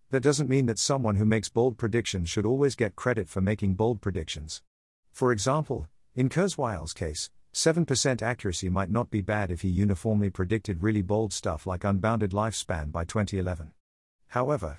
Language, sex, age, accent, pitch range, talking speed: English, male, 50-69, American, 95-120 Hz, 160 wpm